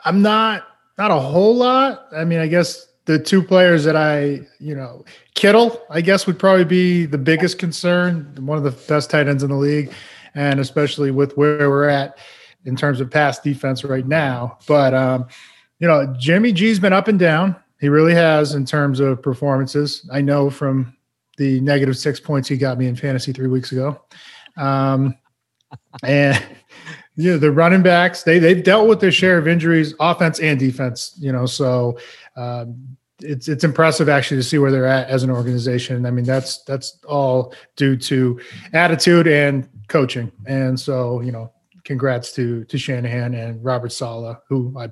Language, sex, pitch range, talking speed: English, male, 130-165 Hz, 180 wpm